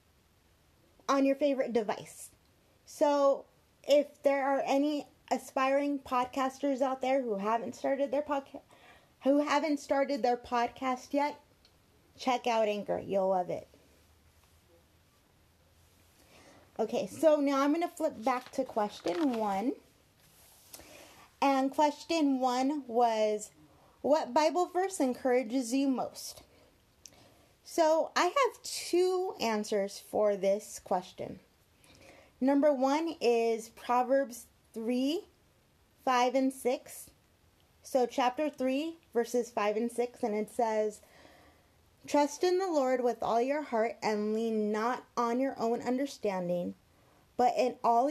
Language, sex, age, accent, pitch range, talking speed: English, female, 20-39, American, 210-280 Hz, 120 wpm